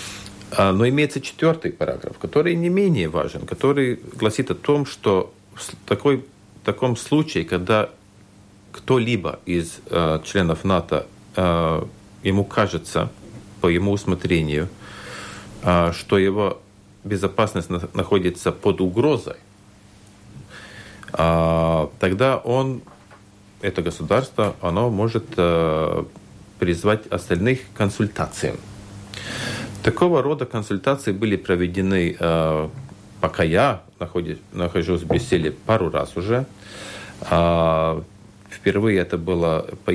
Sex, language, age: male, Russian, 40-59